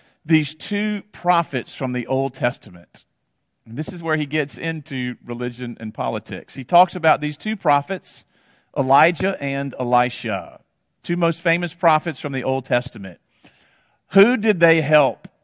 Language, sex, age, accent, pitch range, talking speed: English, male, 40-59, American, 130-170 Hz, 145 wpm